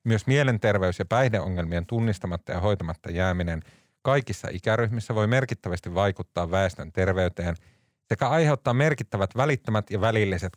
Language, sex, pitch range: Finnish, male, 95-125 Hz